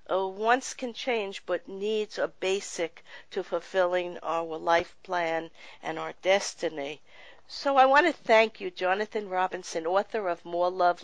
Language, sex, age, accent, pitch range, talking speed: English, female, 50-69, American, 170-215 Hz, 150 wpm